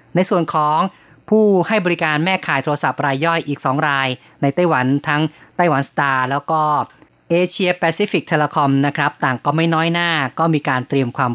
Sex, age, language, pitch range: female, 20-39, Thai, 135-160 Hz